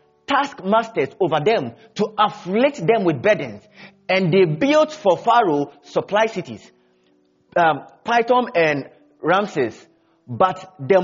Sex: male